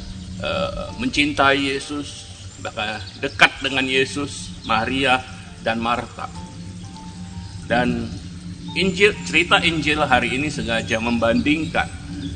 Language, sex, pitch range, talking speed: Indonesian, male, 90-125 Hz, 85 wpm